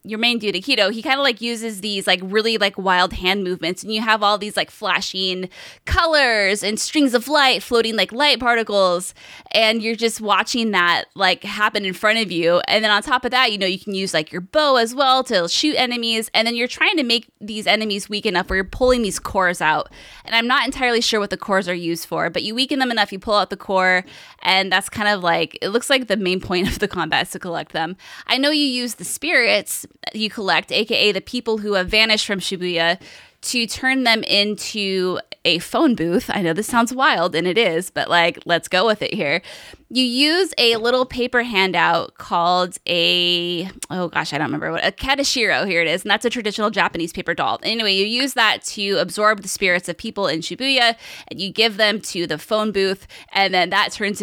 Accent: American